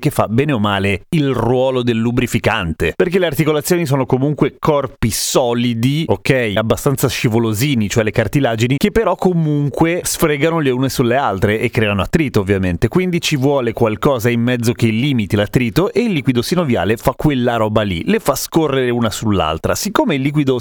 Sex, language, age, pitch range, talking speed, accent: male, Italian, 30-49, 110-145 Hz, 170 wpm, native